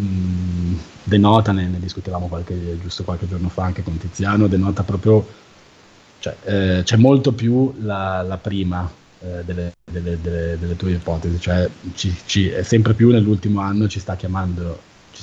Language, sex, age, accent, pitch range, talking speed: Italian, male, 30-49, native, 85-100 Hz, 160 wpm